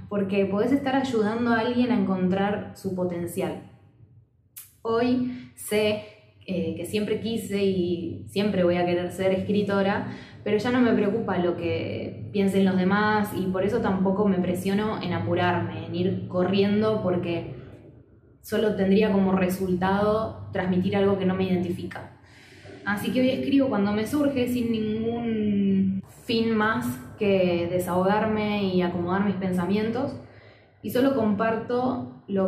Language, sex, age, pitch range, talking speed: Spanish, female, 10-29, 175-220 Hz, 140 wpm